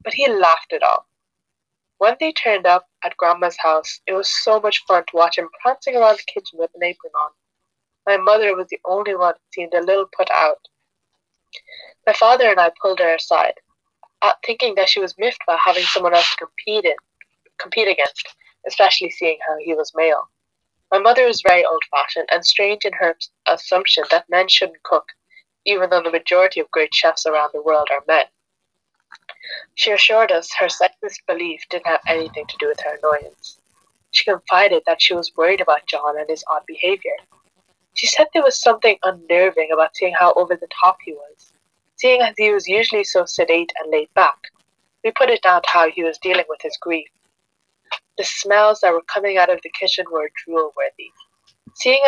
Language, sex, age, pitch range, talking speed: English, female, 20-39, 165-230 Hz, 190 wpm